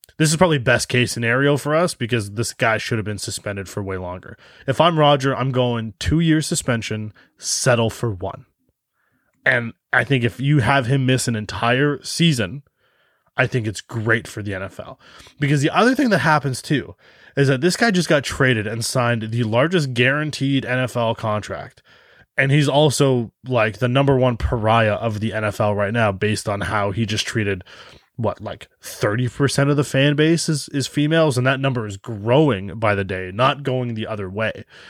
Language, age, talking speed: English, 20-39, 185 wpm